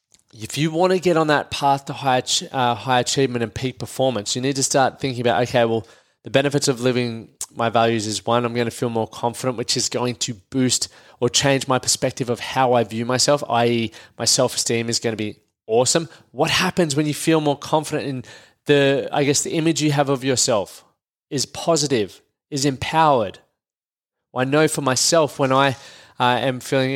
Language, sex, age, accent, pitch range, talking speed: English, male, 20-39, Australian, 120-150 Hz, 200 wpm